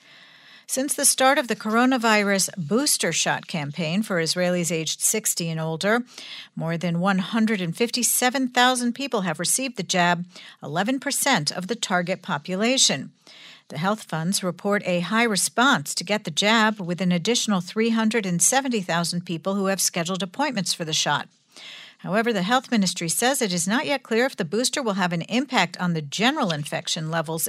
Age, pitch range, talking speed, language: 50-69, 170-225 Hz, 160 wpm, English